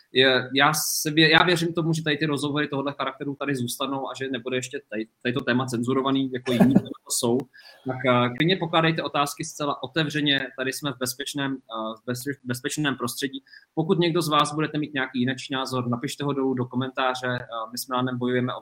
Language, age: Czech, 20-39